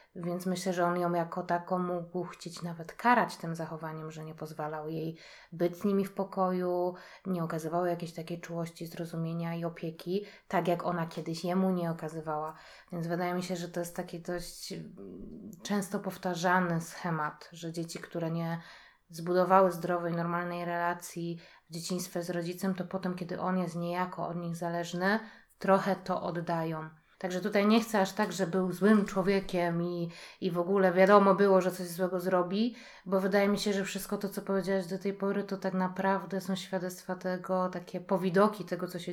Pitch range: 165-185 Hz